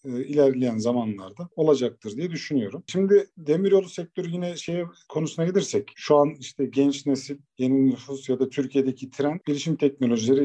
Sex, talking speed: male, 145 wpm